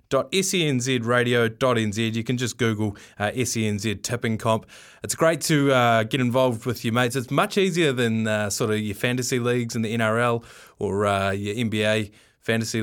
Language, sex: English, male